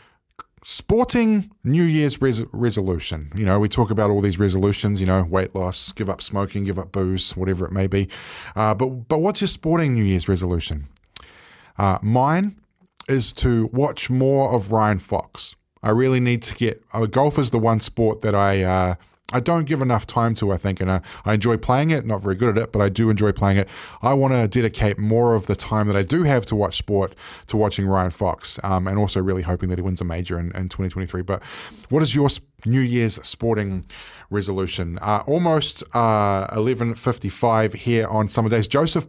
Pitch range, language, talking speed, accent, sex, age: 95-120 Hz, English, 200 wpm, Australian, male, 20-39